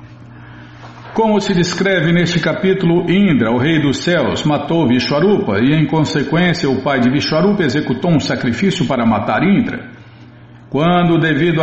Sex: male